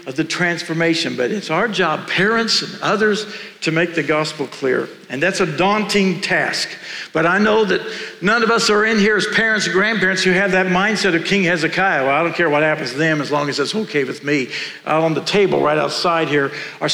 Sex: male